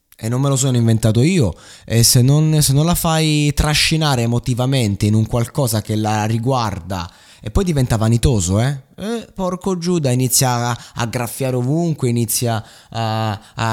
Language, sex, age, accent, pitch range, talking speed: Italian, male, 20-39, native, 110-145 Hz, 165 wpm